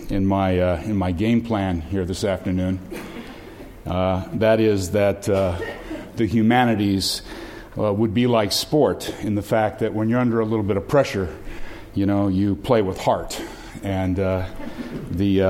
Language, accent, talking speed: English, American, 165 wpm